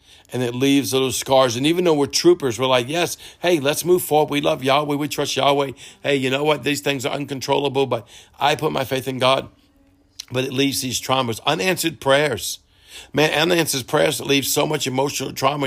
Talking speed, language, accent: 205 wpm, English, American